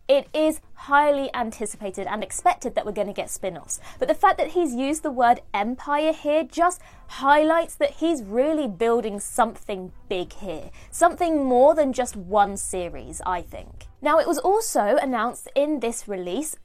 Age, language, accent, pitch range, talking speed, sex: 20-39, English, British, 225-320 Hz, 170 wpm, female